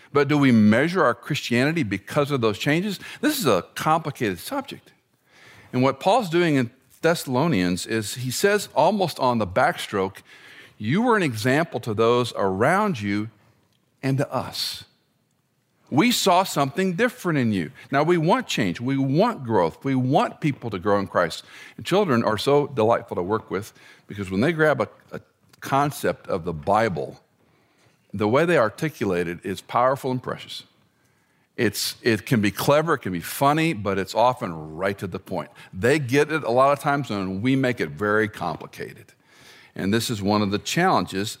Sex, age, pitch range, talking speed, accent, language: male, 50-69, 105-150 Hz, 175 wpm, American, English